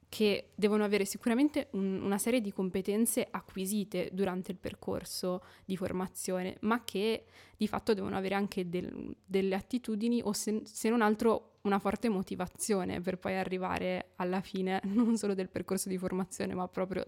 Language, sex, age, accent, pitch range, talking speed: Italian, female, 20-39, native, 185-210 Hz, 150 wpm